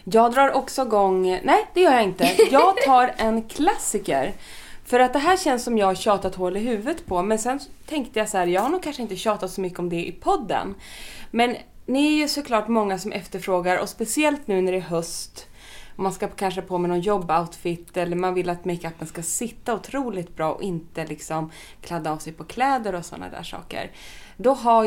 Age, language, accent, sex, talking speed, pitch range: 20-39, Swedish, native, female, 215 wpm, 180-250 Hz